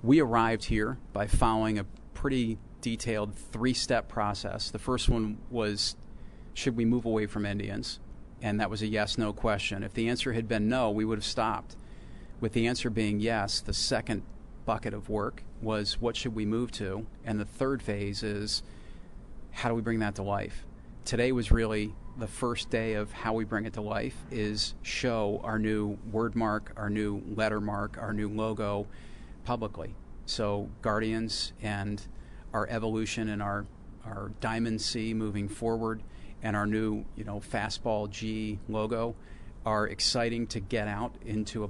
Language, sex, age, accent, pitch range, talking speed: English, male, 40-59, American, 105-115 Hz, 170 wpm